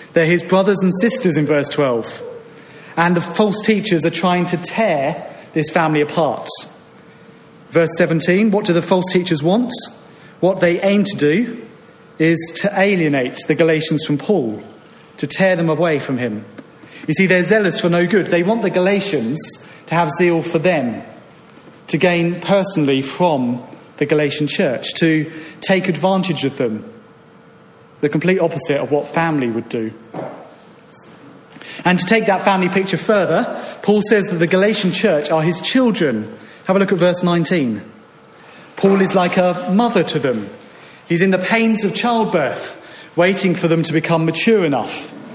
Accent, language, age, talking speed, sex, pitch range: British, English, 30-49, 165 wpm, male, 160-195 Hz